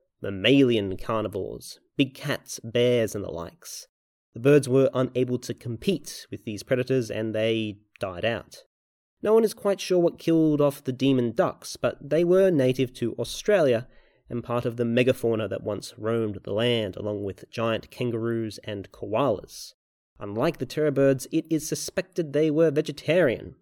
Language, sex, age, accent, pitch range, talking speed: English, male, 30-49, Australian, 110-145 Hz, 165 wpm